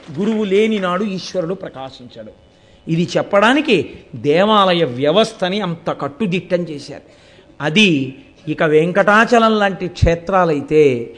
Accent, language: native, Telugu